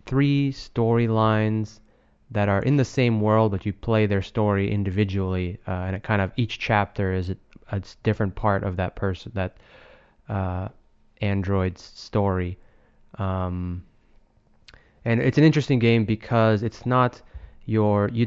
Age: 20-39